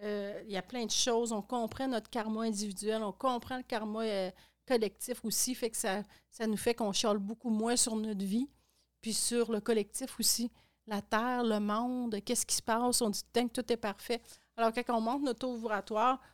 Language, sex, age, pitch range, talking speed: French, female, 40-59, 215-250 Hz, 210 wpm